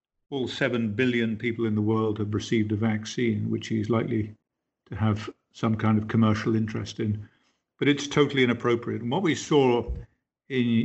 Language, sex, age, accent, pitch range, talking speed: English, male, 50-69, British, 110-125 Hz, 170 wpm